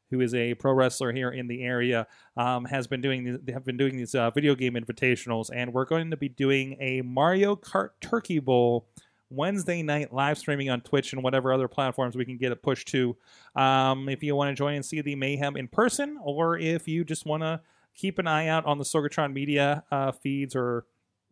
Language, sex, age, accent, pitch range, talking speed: English, male, 30-49, American, 120-150 Hz, 220 wpm